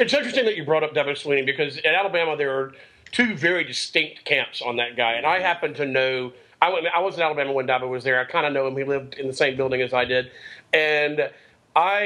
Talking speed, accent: 245 wpm, American